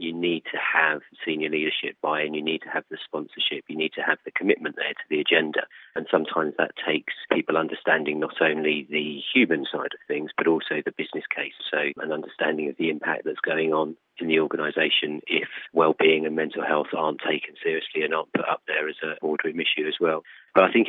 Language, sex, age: English, male, 40-59